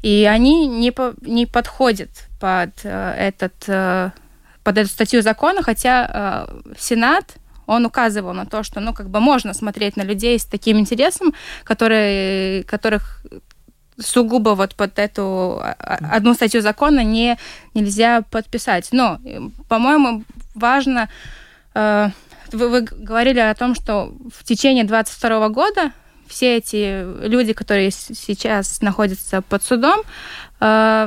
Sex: female